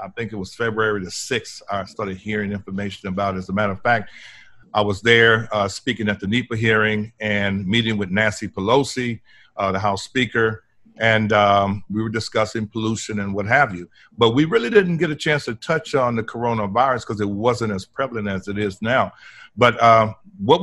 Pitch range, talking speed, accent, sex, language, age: 105-125 Hz, 205 wpm, American, male, English, 50-69